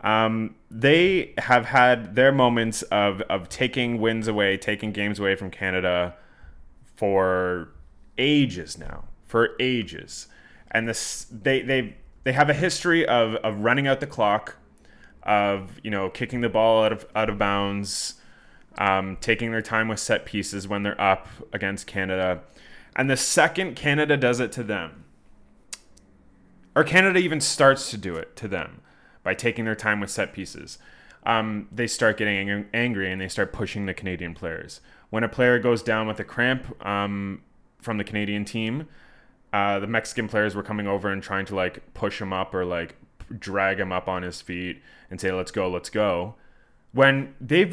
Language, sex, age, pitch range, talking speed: English, male, 20-39, 100-125 Hz, 175 wpm